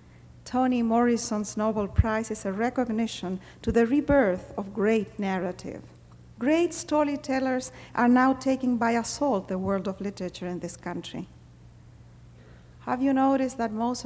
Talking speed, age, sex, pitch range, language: 135 wpm, 50-69, female, 185-235 Hz, English